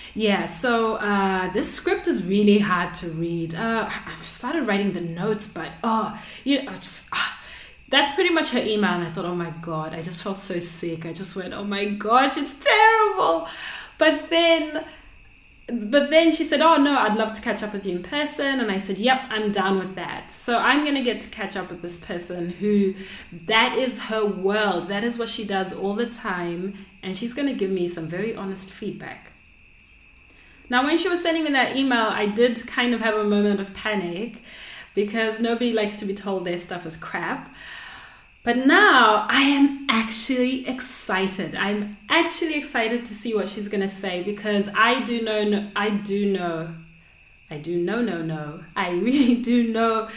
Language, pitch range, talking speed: English, 190-250 Hz, 195 wpm